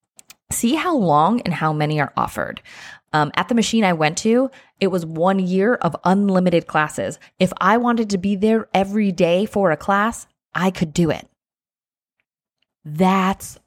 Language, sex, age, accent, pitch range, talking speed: English, female, 20-39, American, 165-205 Hz, 165 wpm